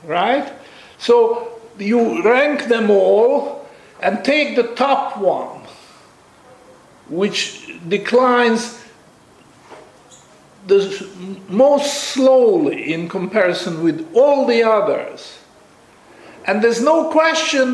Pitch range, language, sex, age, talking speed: 195-295 Hz, English, male, 50-69, 90 wpm